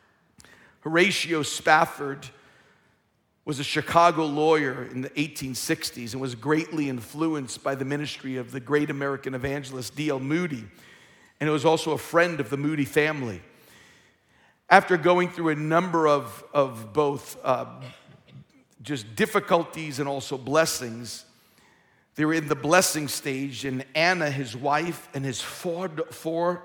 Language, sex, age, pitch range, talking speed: English, male, 50-69, 130-155 Hz, 135 wpm